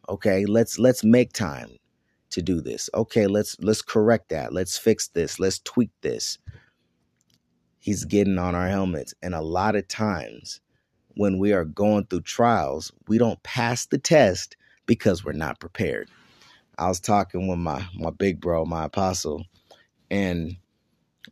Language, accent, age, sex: English, American, 30-49, male